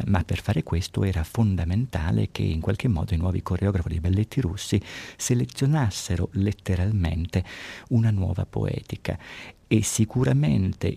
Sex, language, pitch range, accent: male, Italian, 90-110 Hz, native